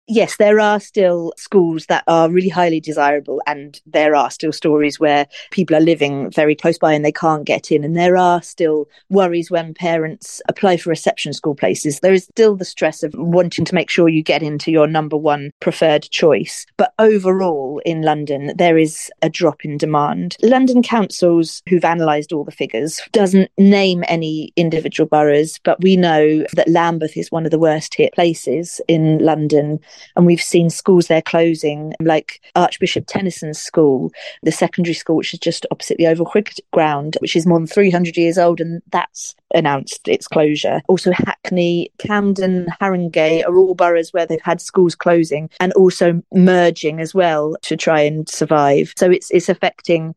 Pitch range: 155-180 Hz